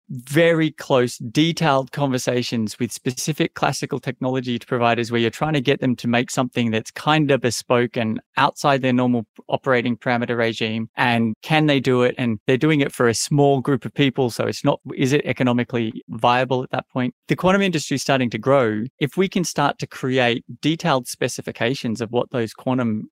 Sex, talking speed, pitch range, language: male, 190 wpm, 120-145 Hz, English